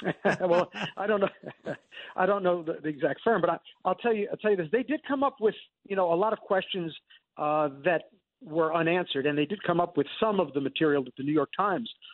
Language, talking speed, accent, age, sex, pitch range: English, 240 wpm, American, 50-69, male, 145-185 Hz